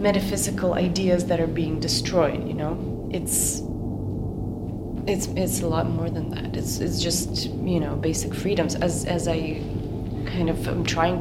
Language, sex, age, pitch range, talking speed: German, female, 30-49, 155-190 Hz, 160 wpm